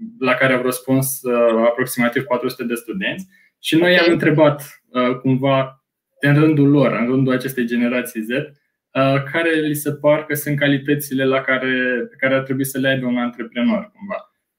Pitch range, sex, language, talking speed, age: 130-150 Hz, male, Romanian, 175 wpm, 20-39